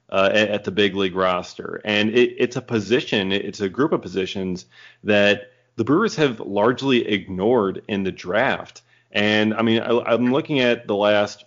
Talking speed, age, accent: 165 wpm, 30-49, American